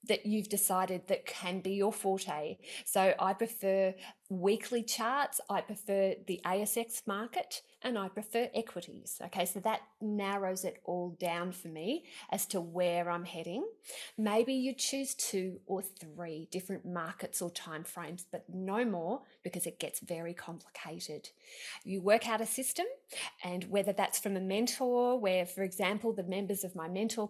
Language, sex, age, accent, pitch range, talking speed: English, female, 30-49, Australian, 185-235 Hz, 160 wpm